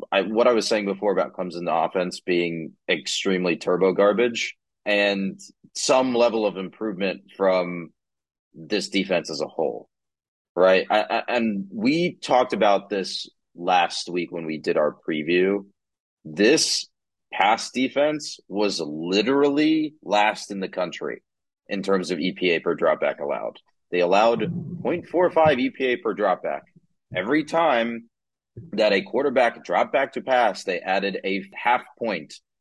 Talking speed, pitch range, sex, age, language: 145 wpm, 95-160 Hz, male, 30-49, English